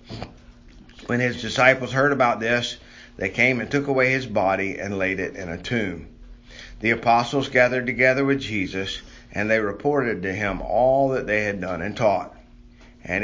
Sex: male